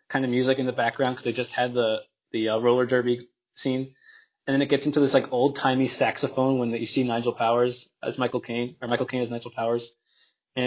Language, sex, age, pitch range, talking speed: English, male, 20-39, 120-165 Hz, 230 wpm